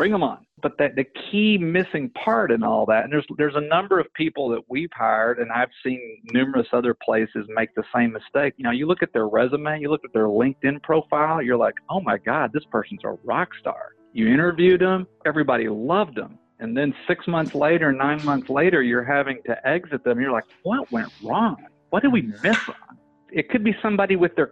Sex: male